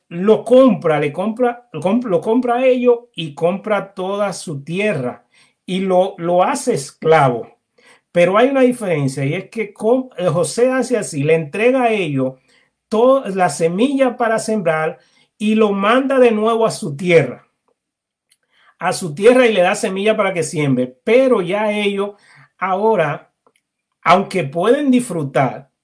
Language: Spanish